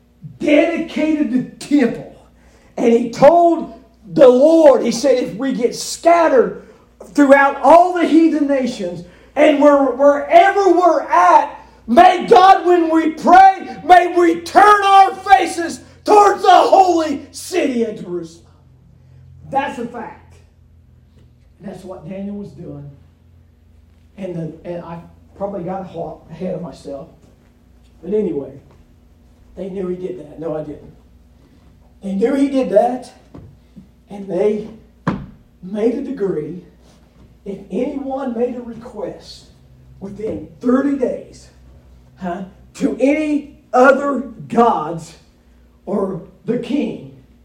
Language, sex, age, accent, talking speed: English, male, 40-59, American, 120 wpm